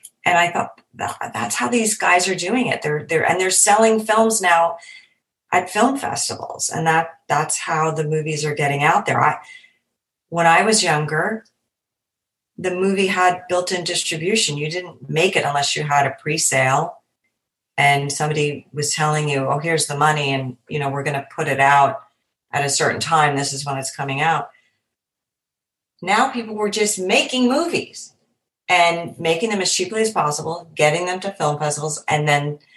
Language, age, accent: English, 40-59, American